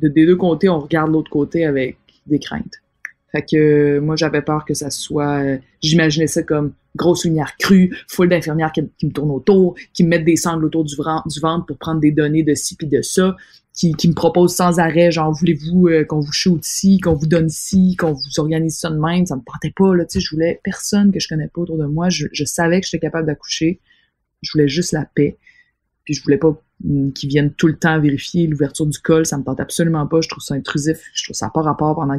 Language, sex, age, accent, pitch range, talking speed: French, female, 20-39, Canadian, 150-175 Hz, 245 wpm